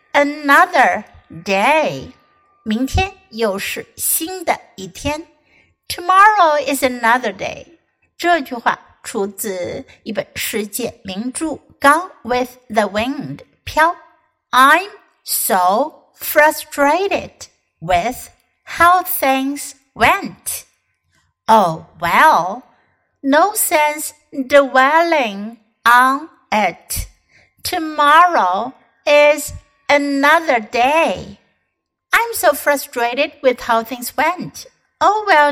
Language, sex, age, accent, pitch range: Chinese, female, 60-79, American, 220-310 Hz